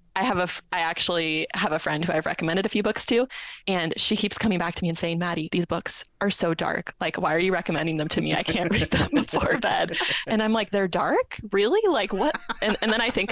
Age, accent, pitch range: 20-39, American, 160-200 Hz